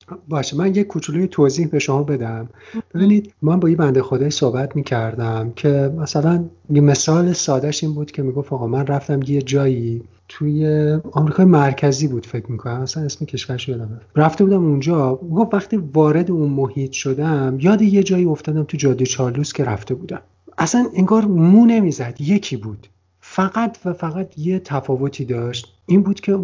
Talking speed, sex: 175 wpm, male